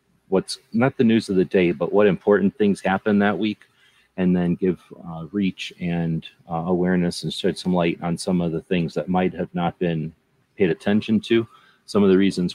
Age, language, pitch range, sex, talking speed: 30-49, English, 85-105 Hz, male, 205 wpm